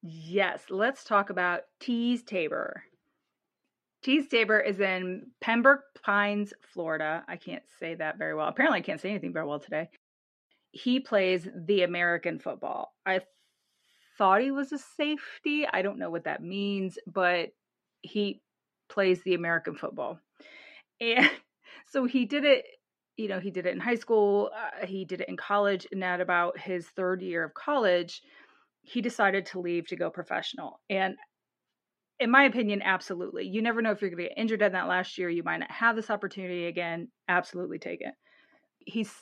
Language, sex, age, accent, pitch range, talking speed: English, female, 30-49, American, 180-235 Hz, 175 wpm